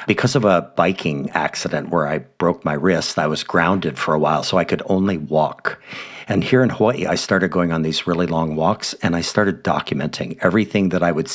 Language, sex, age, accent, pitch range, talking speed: English, male, 50-69, American, 80-105 Hz, 215 wpm